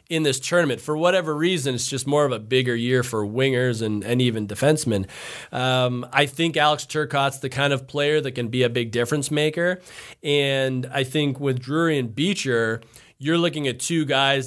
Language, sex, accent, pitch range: English, male, American, 125-150 Hz